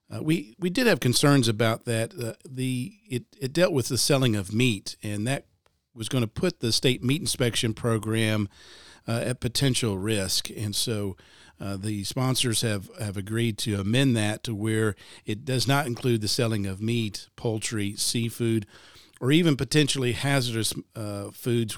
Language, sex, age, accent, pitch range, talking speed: English, male, 50-69, American, 105-125 Hz, 170 wpm